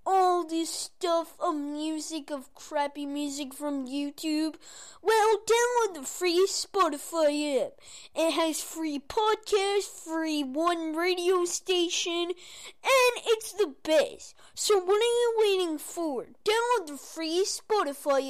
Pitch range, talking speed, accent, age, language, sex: 285-365 Hz, 125 wpm, American, 20-39, English, female